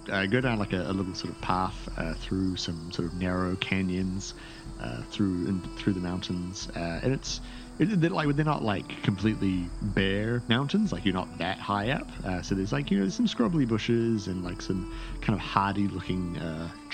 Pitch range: 95-125 Hz